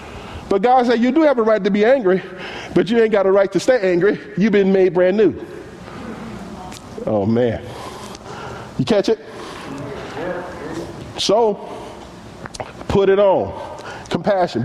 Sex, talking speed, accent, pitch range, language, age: male, 145 wpm, American, 155-205 Hz, English, 40-59